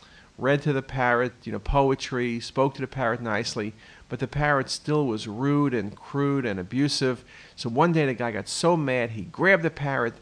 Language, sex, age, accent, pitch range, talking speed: English, male, 50-69, American, 115-145 Hz, 200 wpm